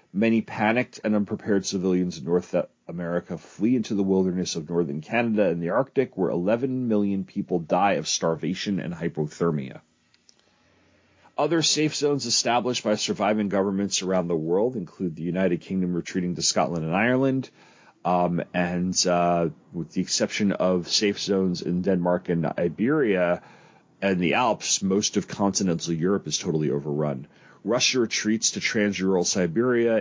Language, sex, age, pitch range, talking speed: English, male, 40-59, 90-110 Hz, 150 wpm